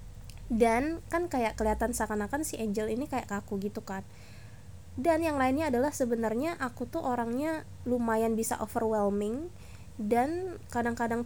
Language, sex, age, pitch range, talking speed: Indonesian, female, 20-39, 205-245 Hz, 135 wpm